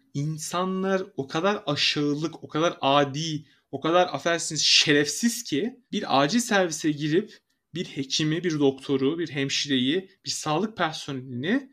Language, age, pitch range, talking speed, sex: Turkish, 30-49, 145-200 Hz, 130 wpm, male